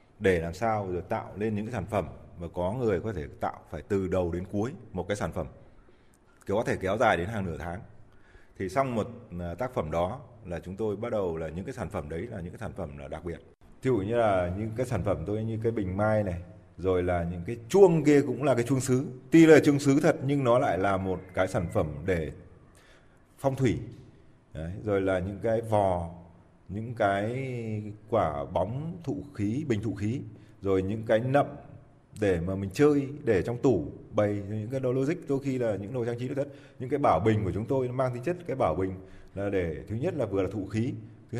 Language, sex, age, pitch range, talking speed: Vietnamese, male, 20-39, 95-130 Hz, 235 wpm